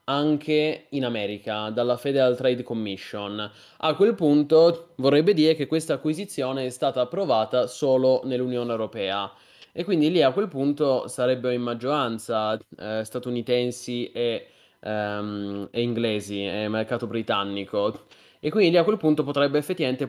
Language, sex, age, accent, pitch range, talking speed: Italian, male, 20-39, native, 115-150 Hz, 135 wpm